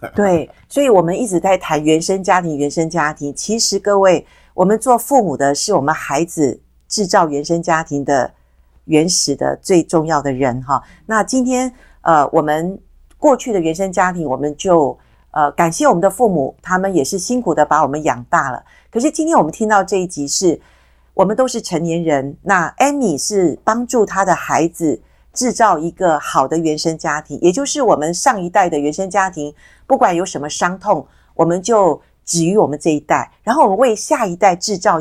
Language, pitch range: Chinese, 155-210 Hz